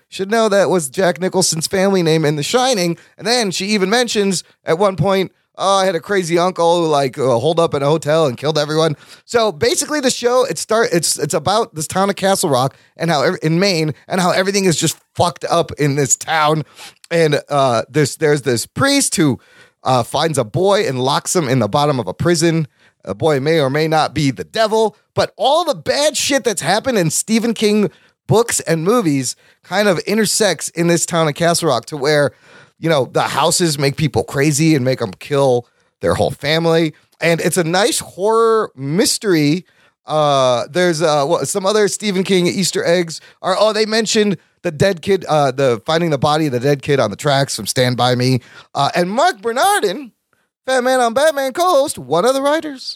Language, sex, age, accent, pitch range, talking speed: English, male, 30-49, American, 150-210 Hz, 210 wpm